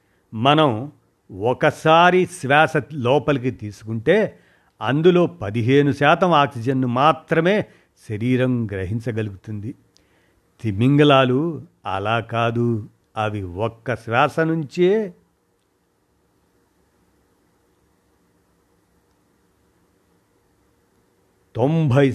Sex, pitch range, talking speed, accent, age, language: male, 115-150 Hz, 55 wpm, native, 50-69, Telugu